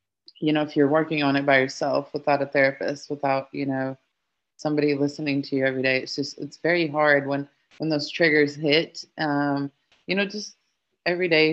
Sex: female